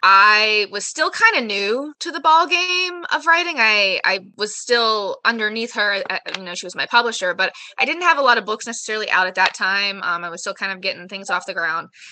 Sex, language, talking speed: female, English, 245 wpm